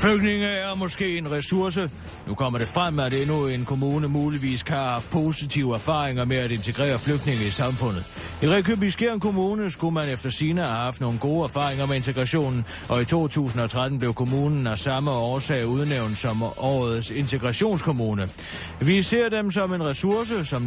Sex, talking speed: male, 170 wpm